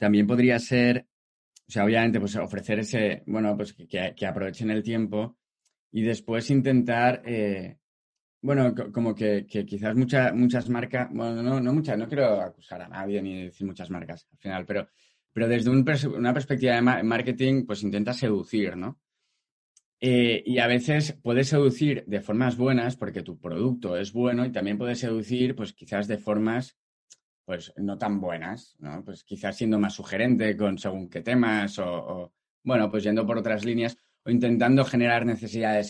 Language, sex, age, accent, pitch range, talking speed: Spanish, male, 20-39, Spanish, 100-125 Hz, 170 wpm